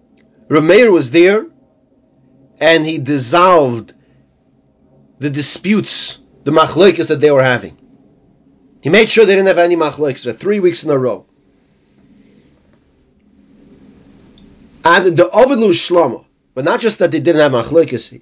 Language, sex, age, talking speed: English, male, 40-59, 130 wpm